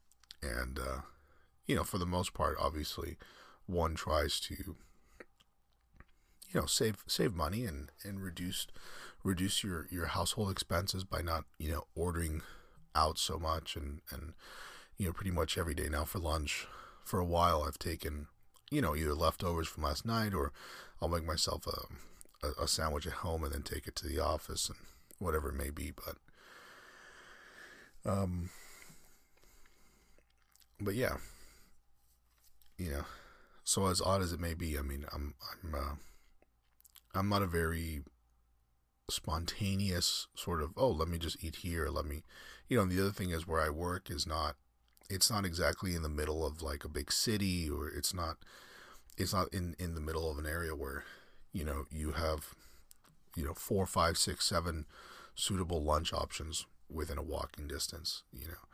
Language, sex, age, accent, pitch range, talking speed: English, male, 40-59, American, 75-90 Hz, 170 wpm